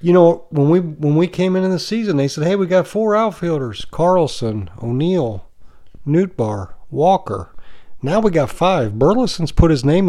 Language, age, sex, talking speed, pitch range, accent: English, 40-59, male, 170 wpm, 115-160 Hz, American